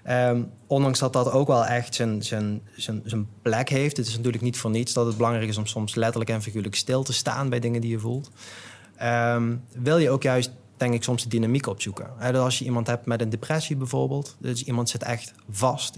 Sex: male